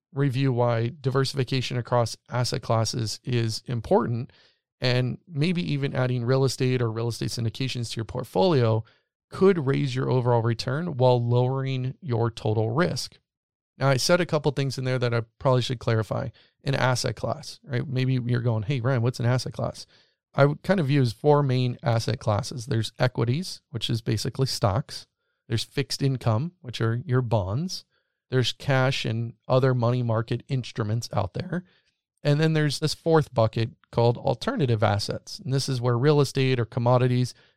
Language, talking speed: English, 170 wpm